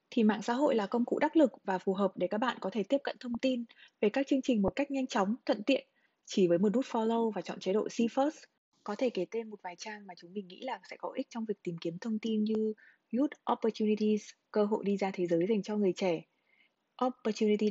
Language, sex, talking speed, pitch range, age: Vietnamese, female, 260 wpm, 205-250 Hz, 20-39